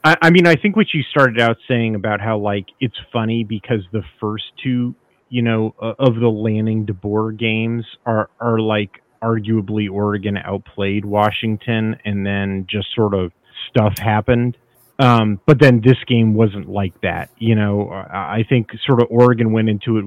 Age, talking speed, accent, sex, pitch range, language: 30-49, 170 wpm, American, male, 105-125 Hz, English